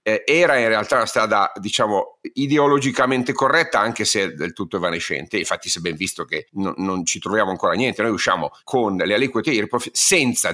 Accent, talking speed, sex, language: native, 175 wpm, male, Italian